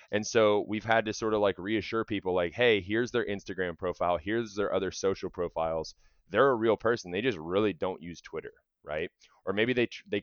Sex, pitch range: male, 90-115 Hz